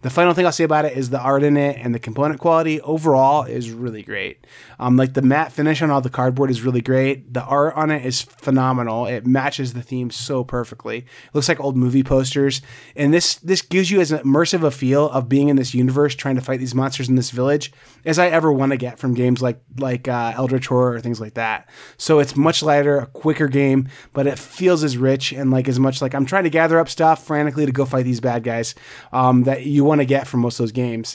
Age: 20-39